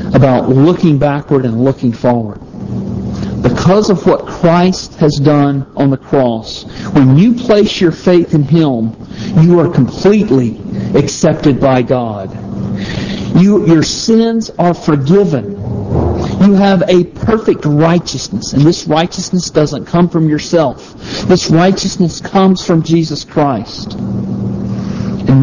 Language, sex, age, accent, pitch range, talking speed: English, male, 50-69, American, 140-195 Hz, 125 wpm